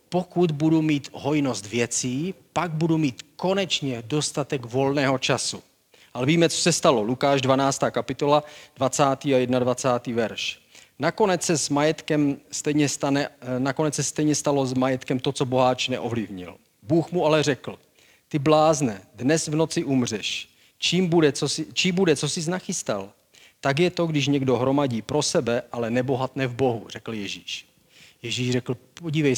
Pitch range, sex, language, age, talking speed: 125-150 Hz, male, Czech, 40-59, 145 wpm